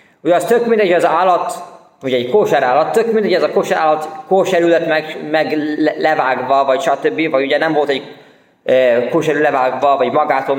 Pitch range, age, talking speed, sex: 135-175 Hz, 20-39, 185 wpm, male